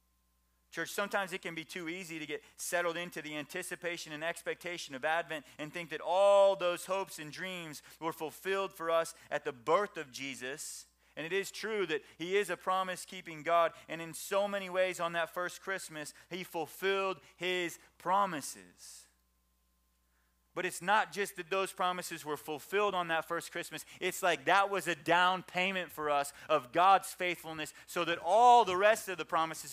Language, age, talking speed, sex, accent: English, 30-49, 180 wpm, male, American